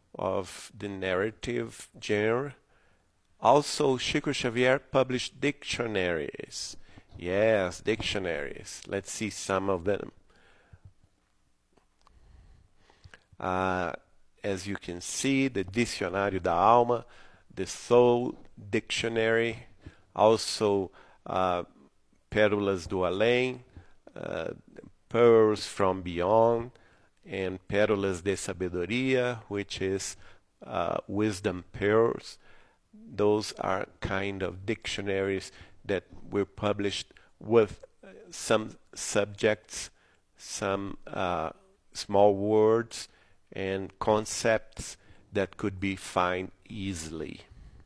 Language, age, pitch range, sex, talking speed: English, 50-69, 95-110 Hz, male, 85 wpm